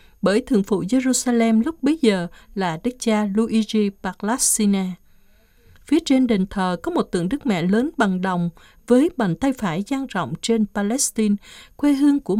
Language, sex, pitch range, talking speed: Vietnamese, female, 195-250 Hz, 170 wpm